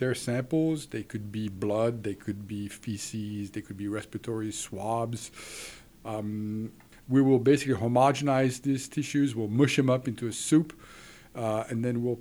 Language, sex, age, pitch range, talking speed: English, male, 50-69, 115-160 Hz, 160 wpm